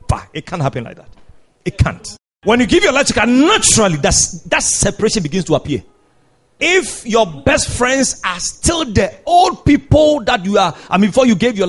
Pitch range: 165-245 Hz